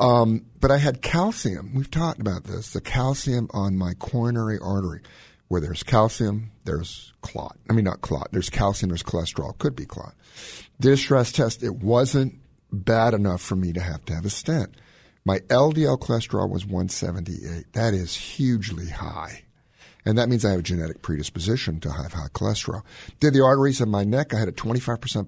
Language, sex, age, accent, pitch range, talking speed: English, male, 50-69, American, 90-120 Hz, 185 wpm